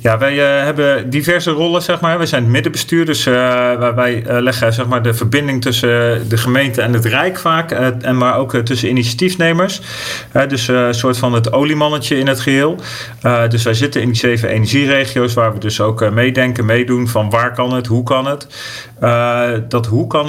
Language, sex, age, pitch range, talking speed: Dutch, male, 40-59, 115-125 Hz, 205 wpm